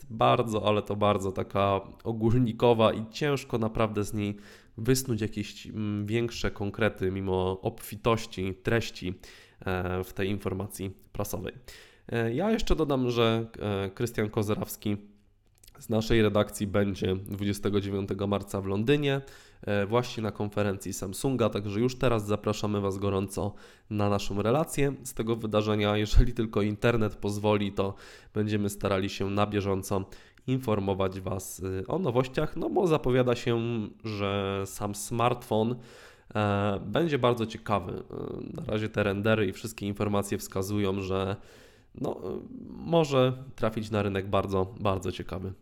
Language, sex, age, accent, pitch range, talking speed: Polish, male, 20-39, native, 100-115 Hz, 120 wpm